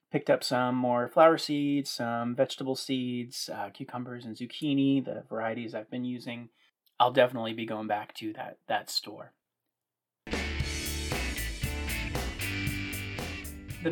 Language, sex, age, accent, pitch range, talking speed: English, male, 30-49, American, 115-150 Hz, 120 wpm